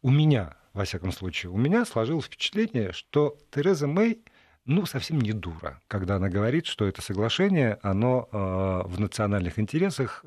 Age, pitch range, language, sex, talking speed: 50-69, 105-145 Hz, Russian, male, 160 wpm